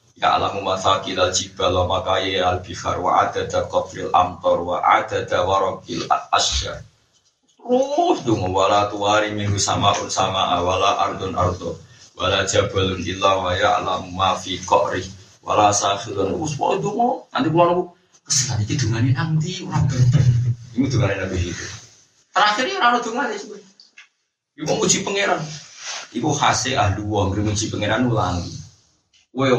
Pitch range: 100-135 Hz